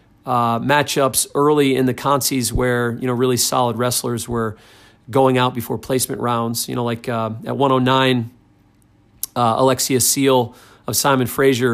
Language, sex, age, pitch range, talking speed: English, male, 40-59, 120-140 Hz, 155 wpm